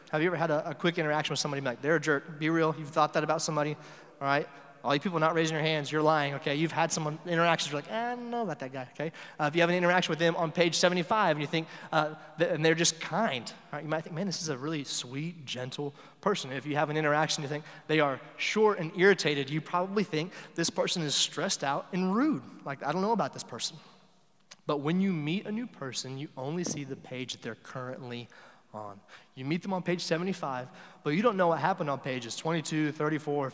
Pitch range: 145-175 Hz